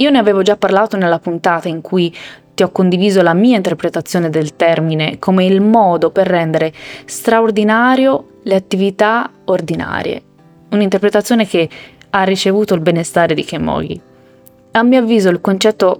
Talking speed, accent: 145 wpm, native